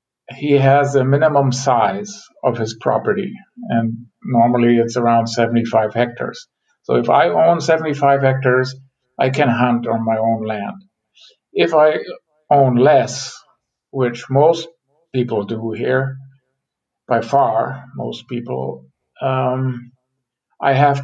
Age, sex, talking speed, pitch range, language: 50-69, male, 125 wpm, 125-140 Hz, English